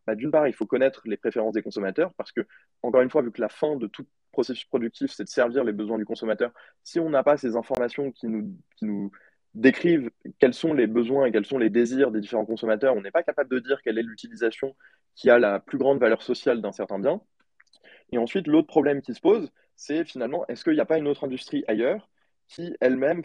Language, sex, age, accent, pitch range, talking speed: French, male, 20-39, French, 115-150 Hz, 235 wpm